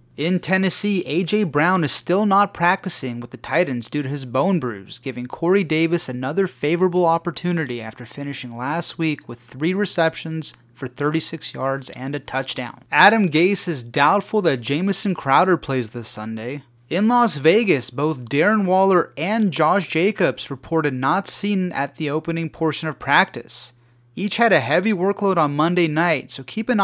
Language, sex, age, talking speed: English, male, 30-49, 165 wpm